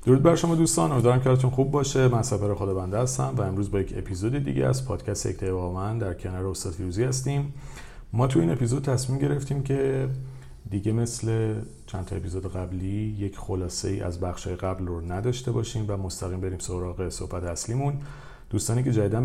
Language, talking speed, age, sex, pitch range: Persian, 180 wpm, 40-59, male, 90-125 Hz